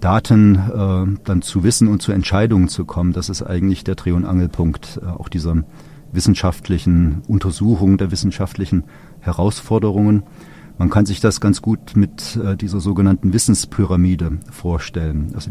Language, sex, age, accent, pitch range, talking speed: German, male, 40-59, German, 90-105 Hz, 145 wpm